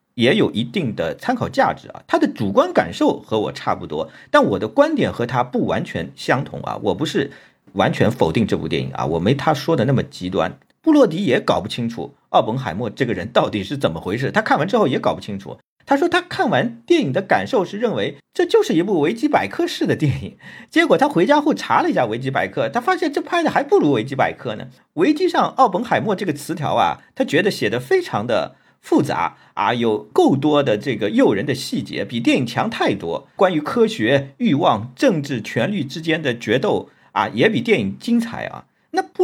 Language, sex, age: Chinese, male, 50-69